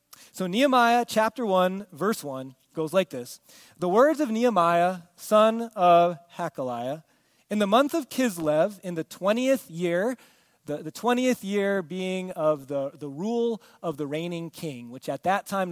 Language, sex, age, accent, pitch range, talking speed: English, male, 30-49, American, 165-215 Hz, 160 wpm